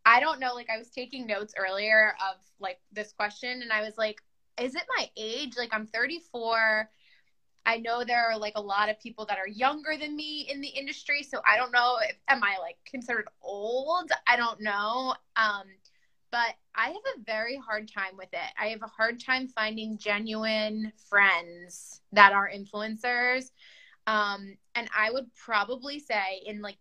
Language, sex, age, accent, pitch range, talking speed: English, female, 20-39, American, 195-230 Hz, 180 wpm